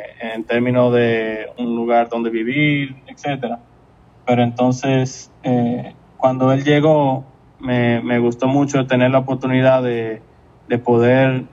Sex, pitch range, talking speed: male, 120-135 Hz, 125 wpm